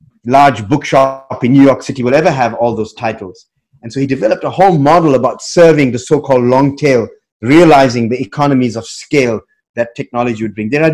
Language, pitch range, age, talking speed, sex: English, 120-160 Hz, 30-49, 205 wpm, male